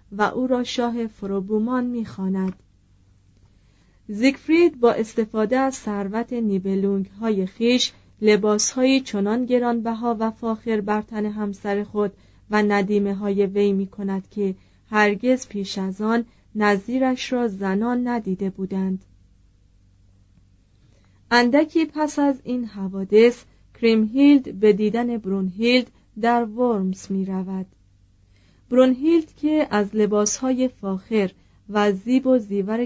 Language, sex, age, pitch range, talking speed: Persian, female, 30-49, 195-240 Hz, 110 wpm